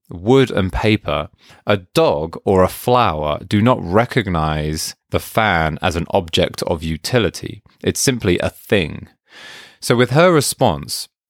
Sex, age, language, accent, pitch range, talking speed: male, 20-39, English, British, 80-105 Hz, 140 wpm